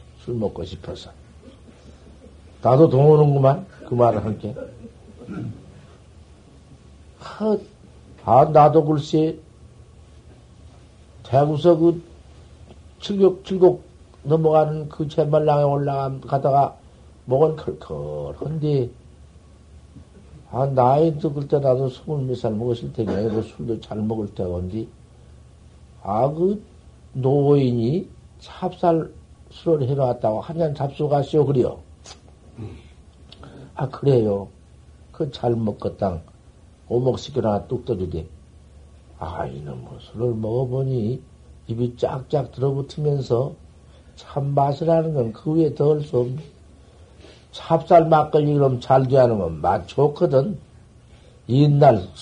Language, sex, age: Korean, male, 60-79